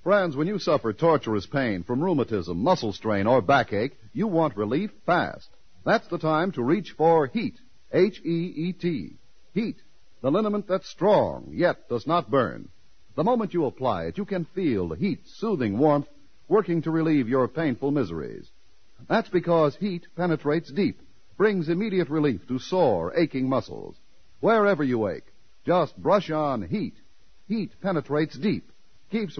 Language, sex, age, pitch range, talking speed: English, male, 60-79, 140-185 Hz, 155 wpm